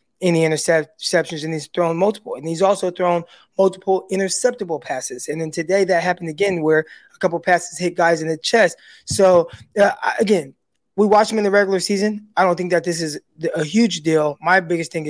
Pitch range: 165-205 Hz